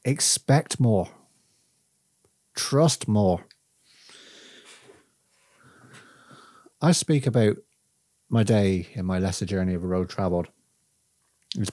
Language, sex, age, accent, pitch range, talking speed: English, male, 40-59, British, 95-125 Hz, 90 wpm